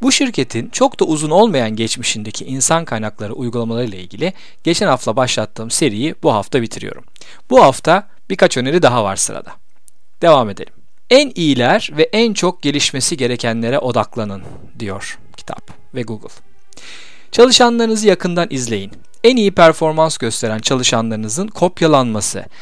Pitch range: 115-190 Hz